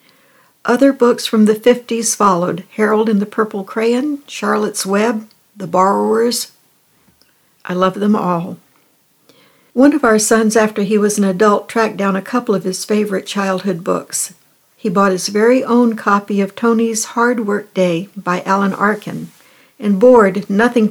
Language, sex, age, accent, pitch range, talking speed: English, female, 60-79, American, 195-235 Hz, 155 wpm